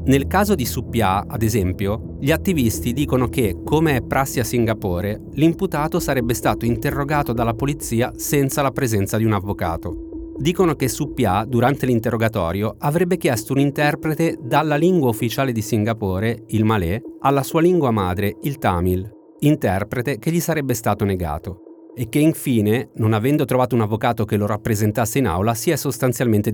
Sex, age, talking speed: male, 30-49, 160 wpm